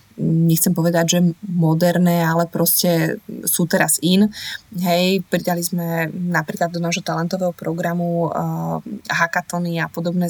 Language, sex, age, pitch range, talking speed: Slovak, female, 20-39, 170-190 Hz, 120 wpm